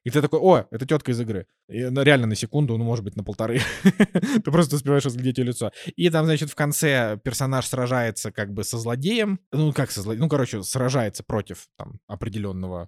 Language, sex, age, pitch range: Russian, male, 20-39, 115-150 Hz